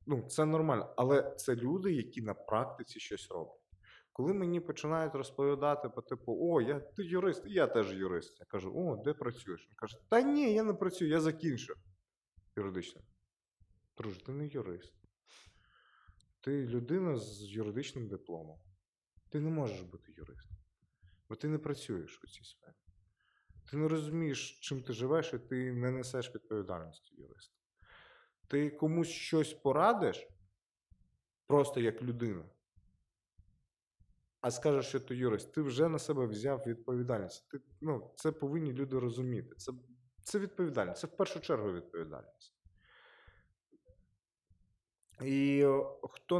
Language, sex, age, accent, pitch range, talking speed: Russian, male, 20-39, native, 100-150 Hz, 135 wpm